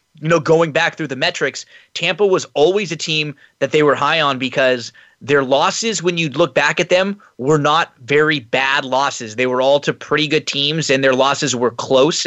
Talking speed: 210 wpm